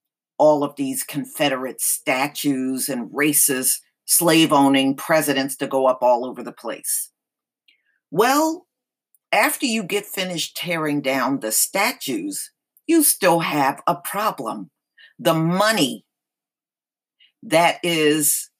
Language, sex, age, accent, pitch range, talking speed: English, female, 50-69, American, 140-210 Hz, 110 wpm